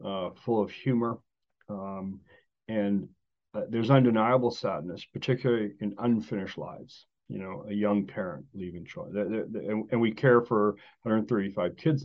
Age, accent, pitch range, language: 40-59, American, 100-125 Hz, English